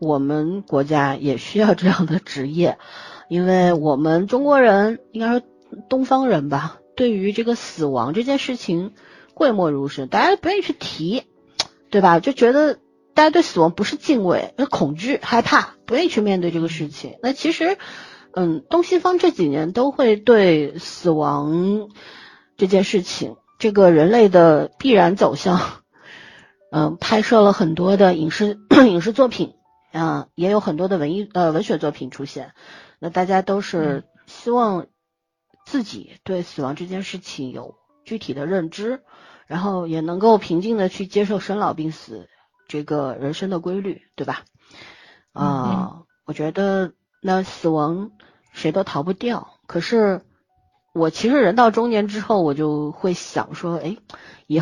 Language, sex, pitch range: Chinese, female, 160-225 Hz